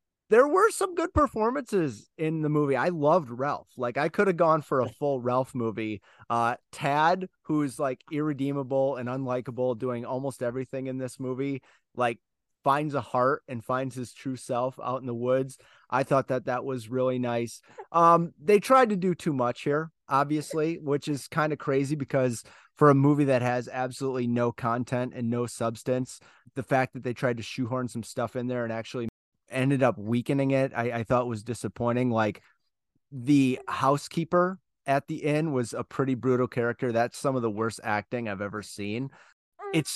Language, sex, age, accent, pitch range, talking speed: English, male, 30-49, American, 120-150 Hz, 185 wpm